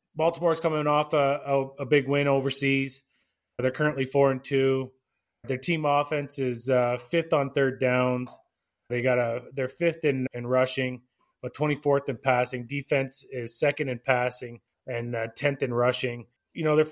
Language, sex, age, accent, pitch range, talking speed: English, male, 30-49, American, 125-150 Hz, 175 wpm